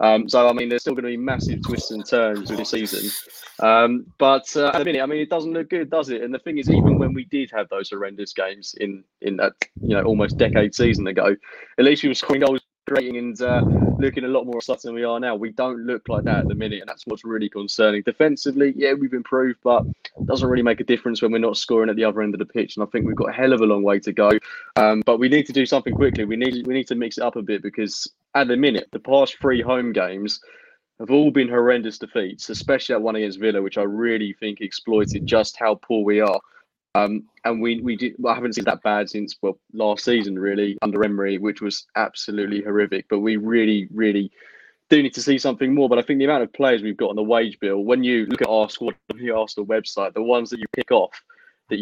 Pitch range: 105-130 Hz